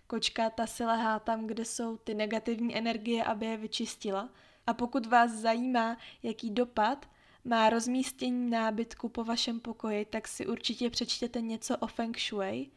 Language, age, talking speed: Czech, 20-39, 155 wpm